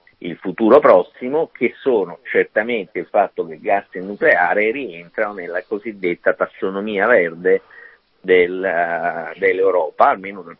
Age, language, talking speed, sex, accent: 50-69, Italian, 130 wpm, male, native